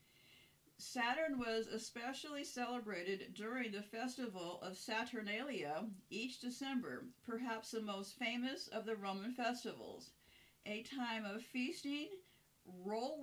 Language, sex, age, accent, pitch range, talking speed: English, female, 50-69, American, 205-245 Hz, 110 wpm